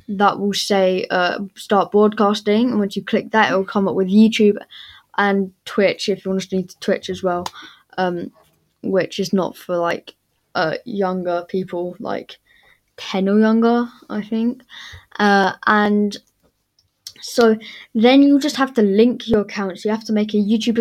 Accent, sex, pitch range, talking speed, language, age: British, female, 190-220 Hz, 170 wpm, English, 10-29